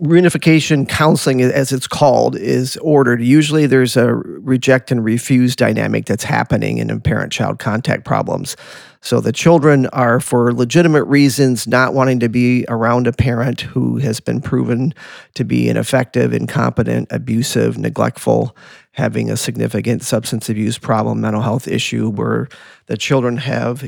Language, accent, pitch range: English, American, 115-135 Hz